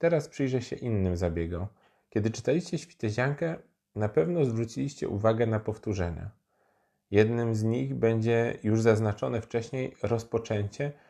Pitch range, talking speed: 100-120 Hz, 120 wpm